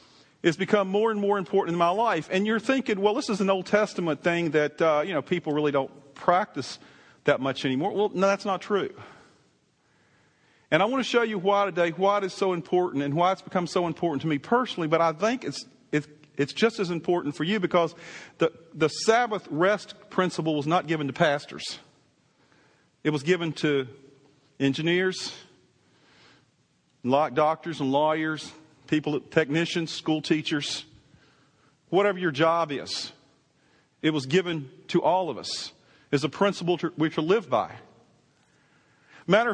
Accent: American